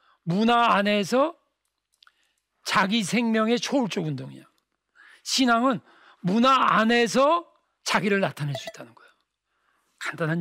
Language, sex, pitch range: Korean, male, 165-240 Hz